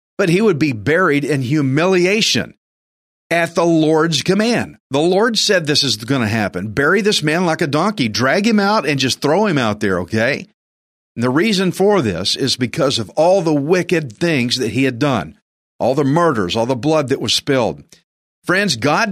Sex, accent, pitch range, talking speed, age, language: male, American, 120-160 Hz, 195 wpm, 50-69, English